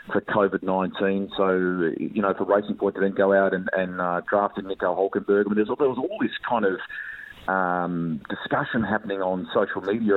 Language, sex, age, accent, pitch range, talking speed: English, male, 30-49, Australian, 95-105 Hz, 175 wpm